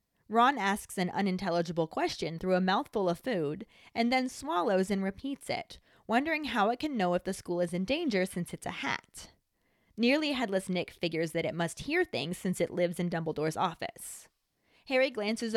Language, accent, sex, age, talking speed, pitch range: English, American, female, 20-39, 185 wpm, 175-235 Hz